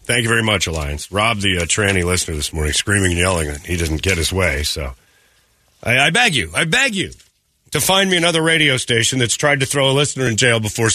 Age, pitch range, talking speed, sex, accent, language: 40-59, 100-165 Hz, 240 wpm, male, American, English